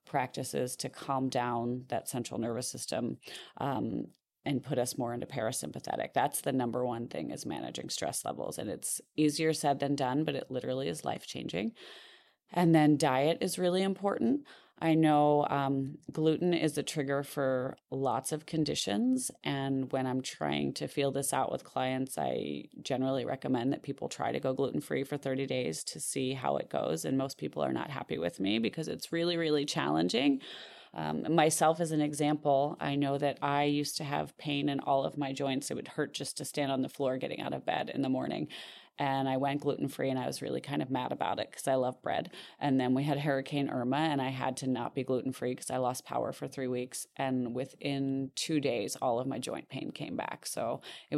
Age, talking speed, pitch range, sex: 30-49, 210 wpm, 130-155 Hz, female